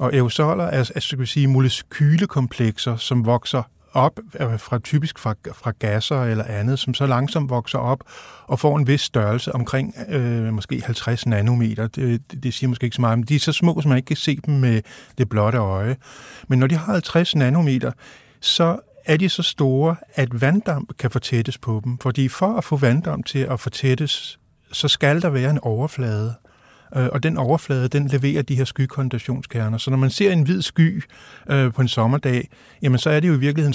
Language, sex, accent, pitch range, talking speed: Danish, male, native, 125-150 Hz, 195 wpm